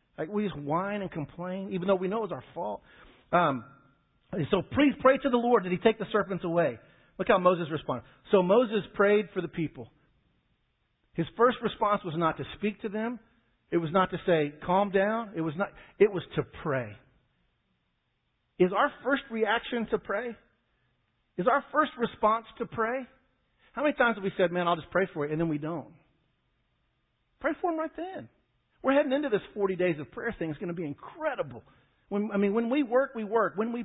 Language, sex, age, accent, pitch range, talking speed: English, male, 50-69, American, 150-230 Hz, 205 wpm